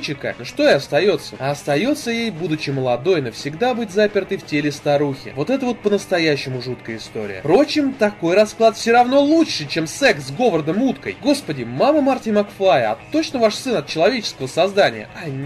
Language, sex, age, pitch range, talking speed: Russian, male, 20-39, 145-230 Hz, 170 wpm